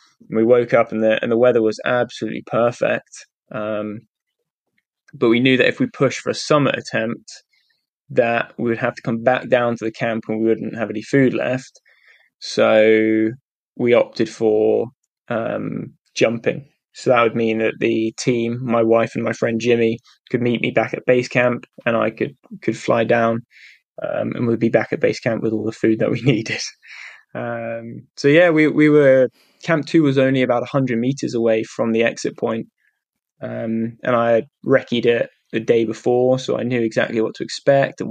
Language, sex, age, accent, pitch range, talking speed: English, male, 10-29, British, 115-130 Hz, 190 wpm